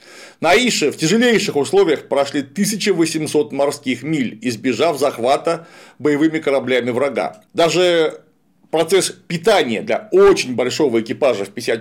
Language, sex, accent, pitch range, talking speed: Russian, male, native, 135-200 Hz, 115 wpm